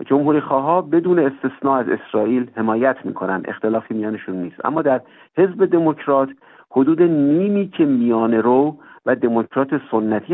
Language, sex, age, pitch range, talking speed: Persian, male, 50-69, 115-150 Hz, 135 wpm